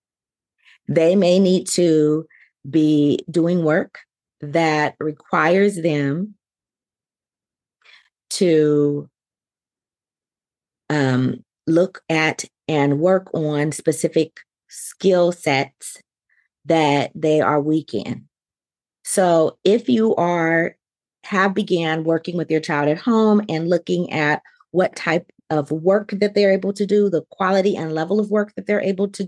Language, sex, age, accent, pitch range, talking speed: English, female, 30-49, American, 155-195 Hz, 120 wpm